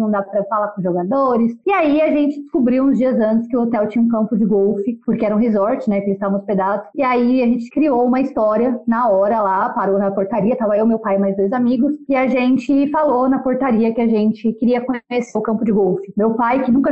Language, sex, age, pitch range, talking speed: Portuguese, female, 20-39, 220-280 Hz, 250 wpm